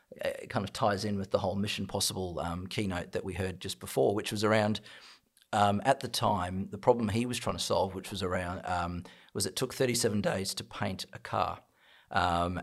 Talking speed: 215 wpm